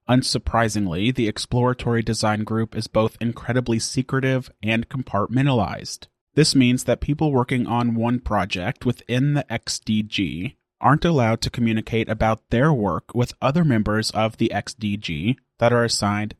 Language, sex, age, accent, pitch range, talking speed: English, male, 30-49, American, 110-125 Hz, 140 wpm